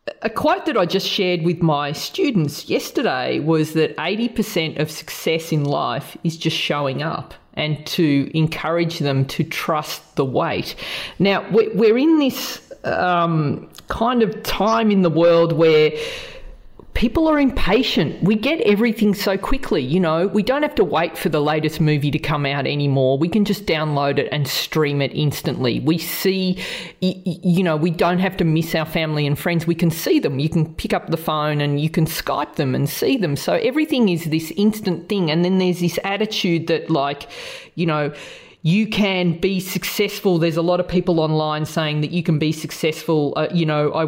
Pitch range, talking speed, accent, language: 150-195 Hz, 190 wpm, Australian, English